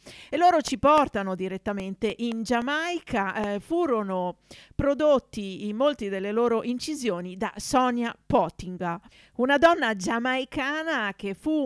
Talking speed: 120 wpm